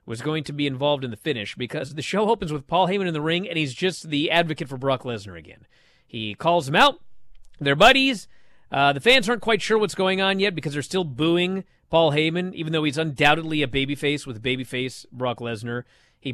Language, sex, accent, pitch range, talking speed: English, male, American, 125-170 Hz, 220 wpm